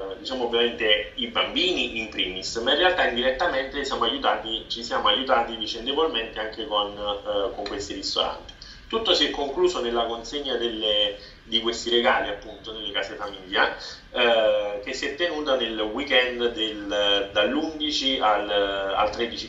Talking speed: 130 wpm